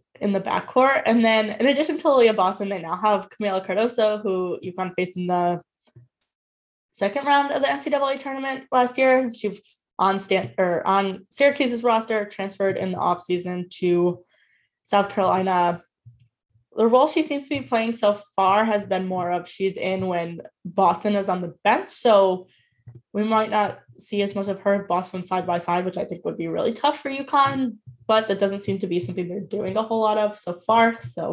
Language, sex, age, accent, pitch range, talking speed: English, female, 10-29, American, 180-225 Hz, 195 wpm